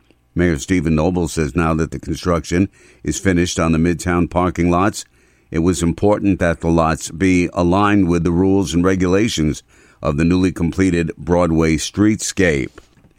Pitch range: 80-100 Hz